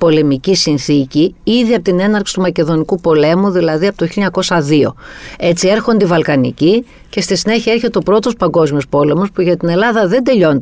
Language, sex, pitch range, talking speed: Greek, female, 155-210 Hz, 175 wpm